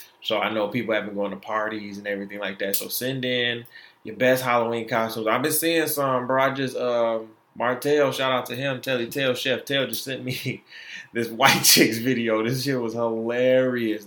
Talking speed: 205 wpm